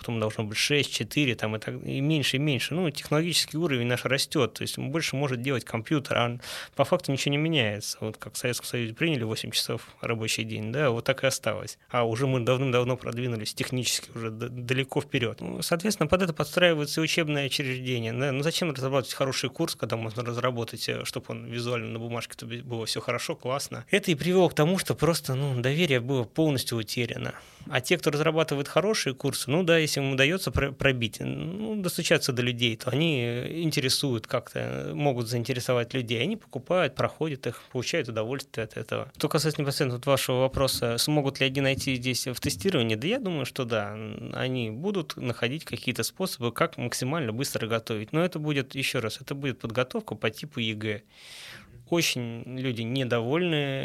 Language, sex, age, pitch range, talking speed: Russian, male, 20-39, 120-150 Hz, 175 wpm